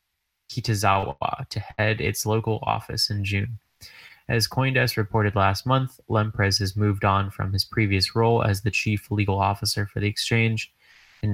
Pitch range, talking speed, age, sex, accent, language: 100-110 Hz, 160 wpm, 20-39, male, American, English